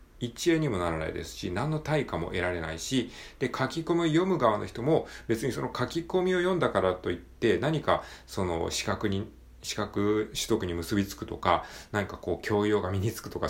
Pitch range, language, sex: 90-145 Hz, Japanese, male